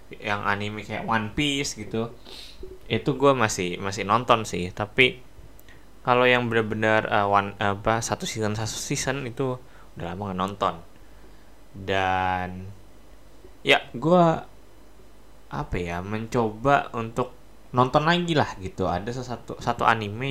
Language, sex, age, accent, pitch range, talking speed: Indonesian, male, 10-29, native, 100-130 Hz, 120 wpm